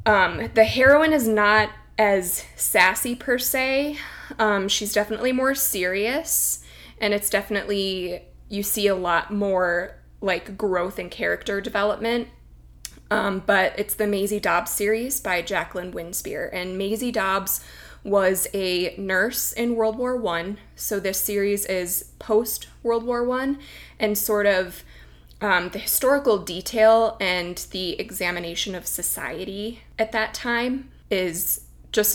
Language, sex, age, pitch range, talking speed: English, female, 20-39, 185-225 Hz, 135 wpm